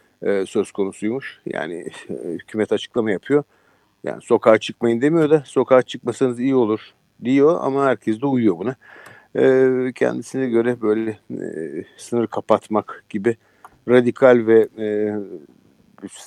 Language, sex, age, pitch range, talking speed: Turkish, male, 50-69, 110-140 Hz, 120 wpm